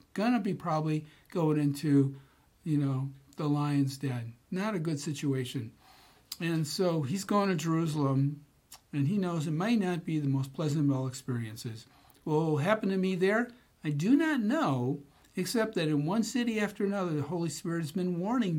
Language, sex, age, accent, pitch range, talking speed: English, male, 60-79, American, 135-170 Hz, 185 wpm